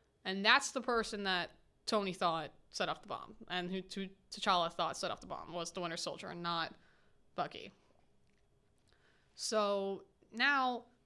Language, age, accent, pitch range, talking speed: English, 20-39, American, 185-215 Hz, 150 wpm